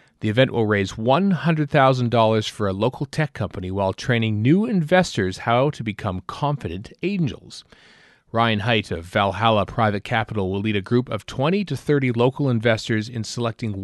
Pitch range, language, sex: 105-140 Hz, English, male